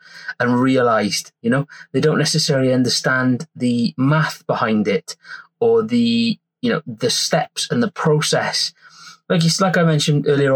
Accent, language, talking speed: British, English, 155 wpm